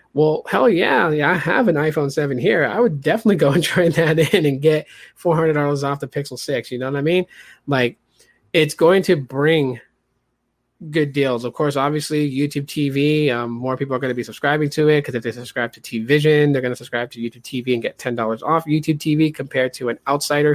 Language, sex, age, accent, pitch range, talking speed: English, male, 20-39, American, 130-160 Hz, 220 wpm